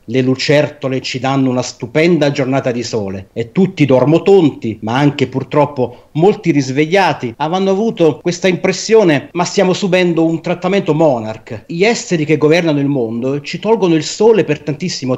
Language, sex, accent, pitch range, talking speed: Italian, male, native, 130-175 Hz, 155 wpm